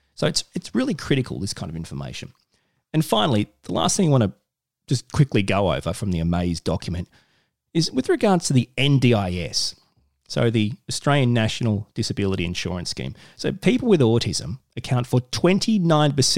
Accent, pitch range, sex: Australian, 105-145 Hz, male